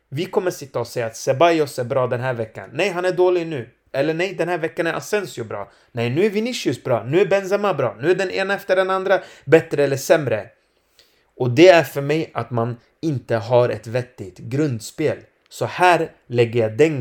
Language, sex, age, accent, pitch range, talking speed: Swedish, male, 30-49, native, 120-165 Hz, 220 wpm